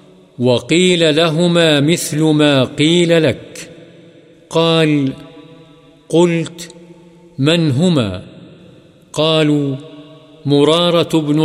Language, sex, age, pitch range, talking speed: Urdu, male, 50-69, 145-165 Hz, 70 wpm